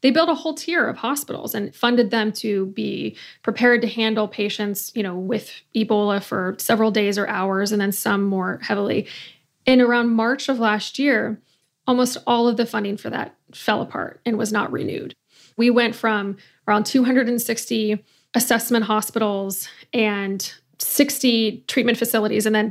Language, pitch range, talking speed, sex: English, 215-240 Hz, 165 wpm, female